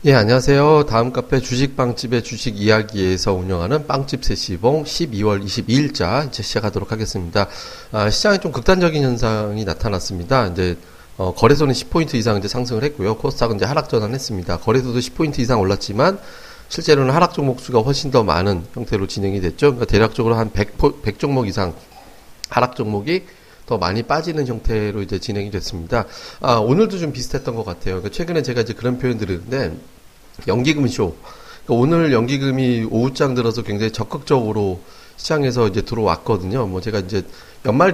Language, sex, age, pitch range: Korean, male, 40-59, 100-135 Hz